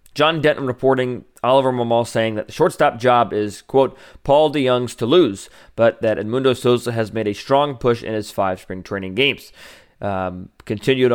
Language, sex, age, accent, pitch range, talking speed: English, male, 30-49, American, 105-125 Hz, 180 wpm